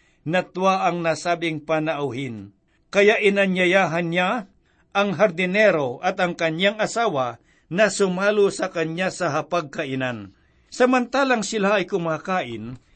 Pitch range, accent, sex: 150-185 Hz, native, male